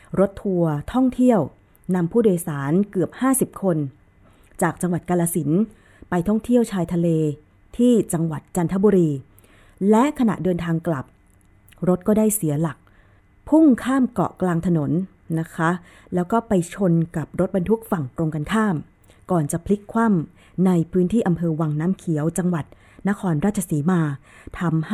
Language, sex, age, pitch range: Thai, female, 20-39, 155-195 Hz